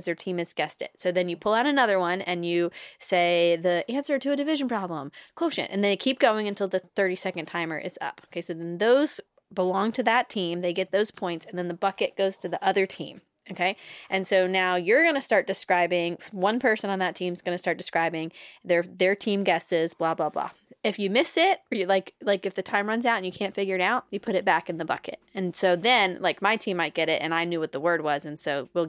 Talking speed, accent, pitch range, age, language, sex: 260 wpm, American, 170-205 Hz, 10-29, English, female